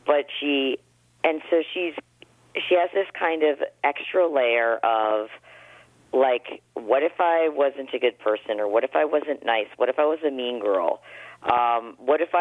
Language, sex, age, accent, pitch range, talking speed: English, female, 40-59, American, 115-150 Hz, 180 wpm